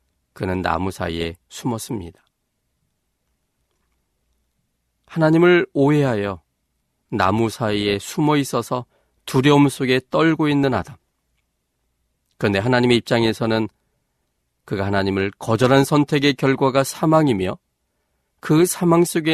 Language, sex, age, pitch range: Korean, male, 40-59, 95-145 Hz